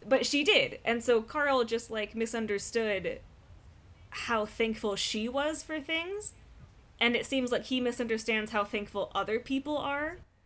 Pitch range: 165-230 Hz